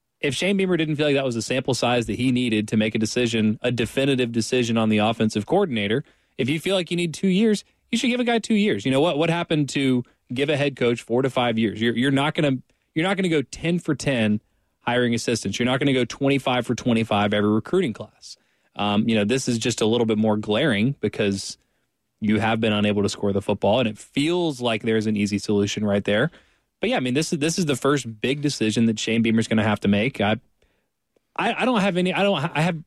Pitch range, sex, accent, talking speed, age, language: 110-145 Hz, male, American, 255 wpm, 20-39, English